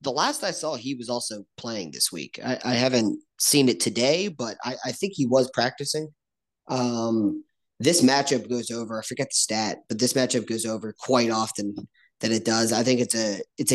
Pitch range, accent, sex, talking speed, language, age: 110-130 Hz, American, male, 205 wpm, English, 30-49